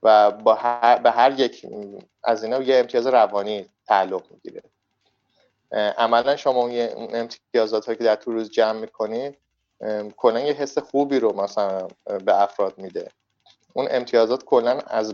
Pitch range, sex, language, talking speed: 105-120 Hz, male, Persian, 140 wpm